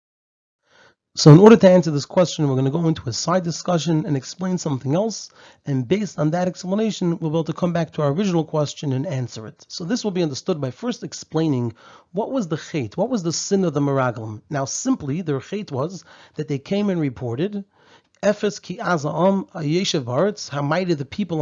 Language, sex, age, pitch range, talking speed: English, male, 30-49, 150-190 Hz, 200 wpm